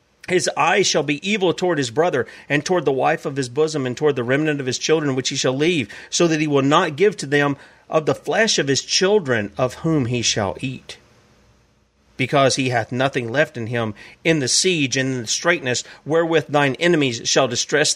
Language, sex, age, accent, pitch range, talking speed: English, male, 40-59, American, 130-180 Hz, 215 wpm